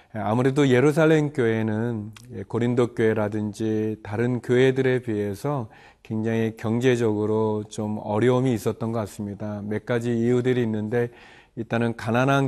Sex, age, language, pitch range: male, 40-59, Korean, 110-125 Hz